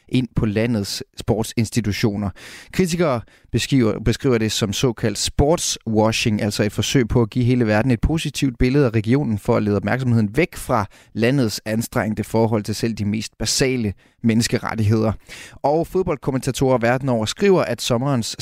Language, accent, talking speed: Danish, native, 150 wpm